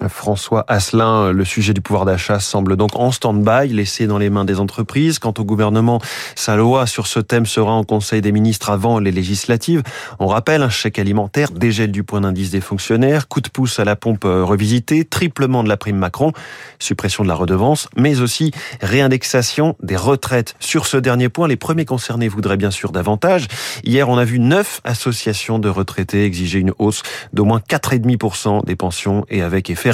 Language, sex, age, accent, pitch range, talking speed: French, male, 30-49, French, 100-135 Hz, 190 wpm